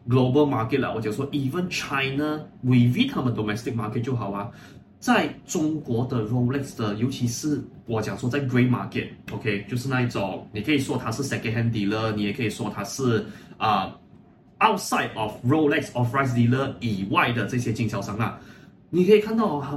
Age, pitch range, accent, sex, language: 30-49, 110-145 Hz, native, male, Chinese